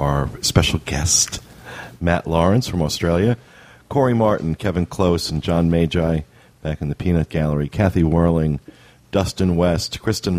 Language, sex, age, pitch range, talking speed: English, male, 40-59, 75-90 Hz, 140 wpm